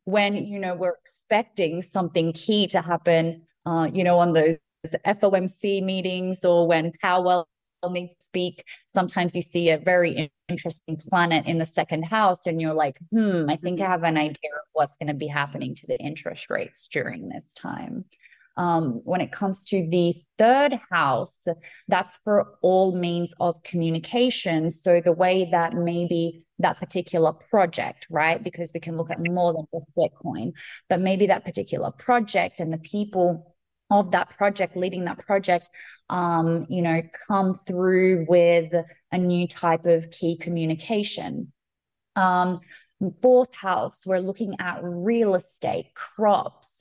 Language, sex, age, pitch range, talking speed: English, female, 20-39, 165-190 Hz, 155 wpm